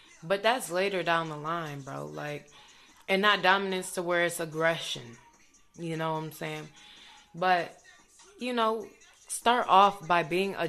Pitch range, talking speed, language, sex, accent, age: 155-190 Hz, 155 wpm, English, female, American, 20-39